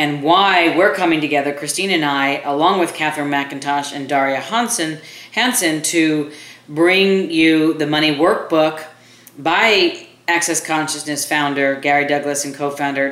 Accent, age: American, 40-59